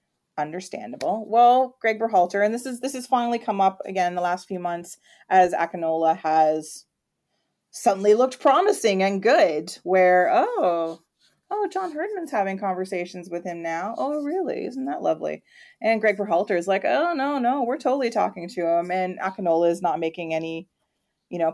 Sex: female